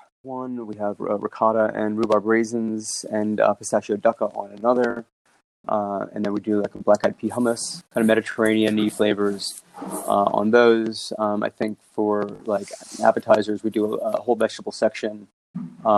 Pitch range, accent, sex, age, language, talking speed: 100-110 Hz, American, male, 20-39, English, 165 wpm